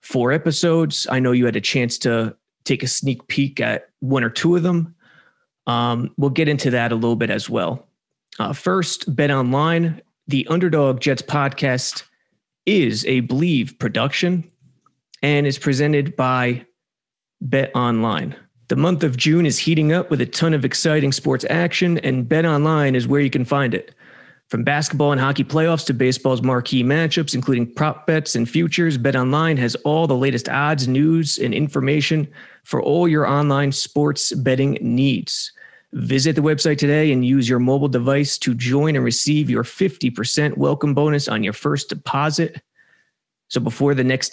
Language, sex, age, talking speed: English, male, 30-49, 170 wpm